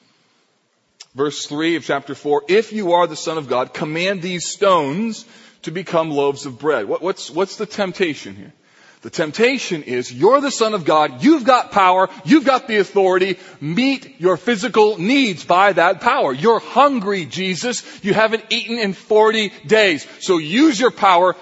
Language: English